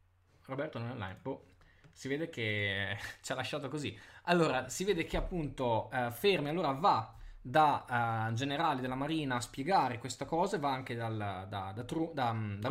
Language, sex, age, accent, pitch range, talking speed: Italian, male, 10-29, native, 120-175 Hz, 185 wpm